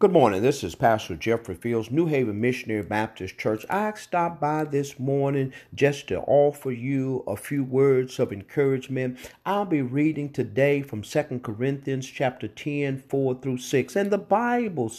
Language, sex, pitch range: English, male, 135-210 Hz